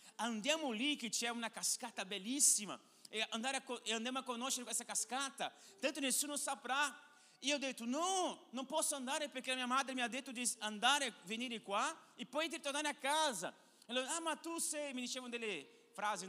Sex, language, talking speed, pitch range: male, Italian, 190 wpm, 215-275 Hz